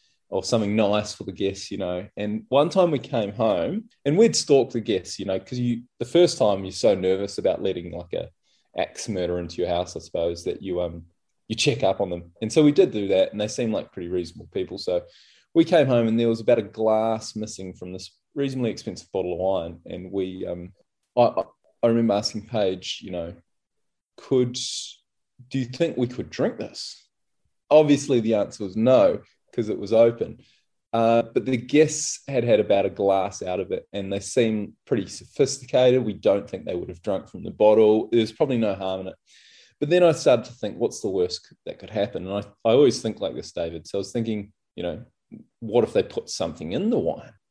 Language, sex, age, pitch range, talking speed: English, male, 20-39, 95-130 Hz, 220 wpm